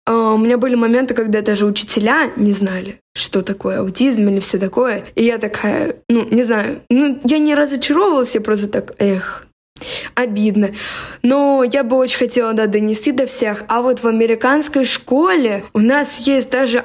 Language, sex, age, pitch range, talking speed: Russian, female, 20-39, 220-270 Hz, 175 wpm